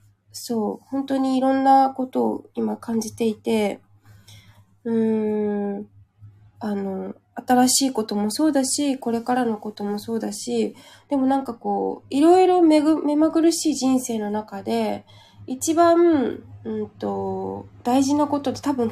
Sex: female